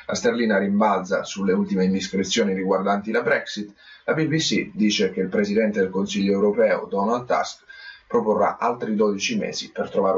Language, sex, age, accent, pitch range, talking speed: Italian, male, 30-49, native, 100-125 Hz, 155 wpm